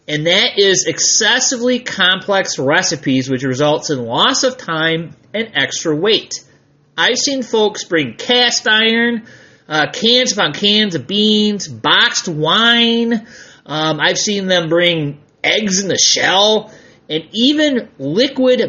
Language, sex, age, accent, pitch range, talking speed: English, male, 30-49, American, 150-235 Hz, 130 wpm